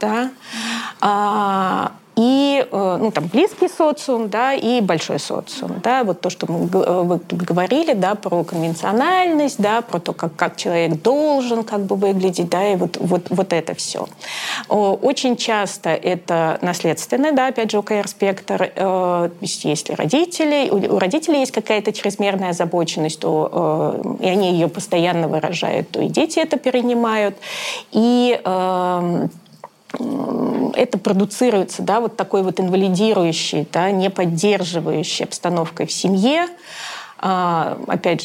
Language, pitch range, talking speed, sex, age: Russian, 185-265 Hz, 125 wpm, female, 30-49